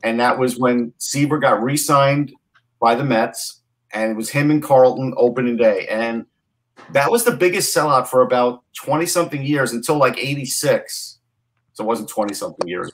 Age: 40-59